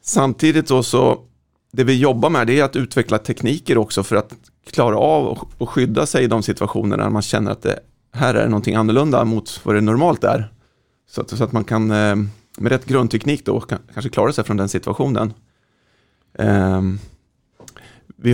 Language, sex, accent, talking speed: Swedish, male, native, 170 wpm